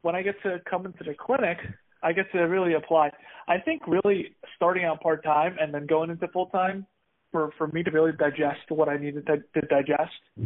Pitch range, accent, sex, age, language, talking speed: 150-185 Hz, American, male, 20-39, English, 205 wpm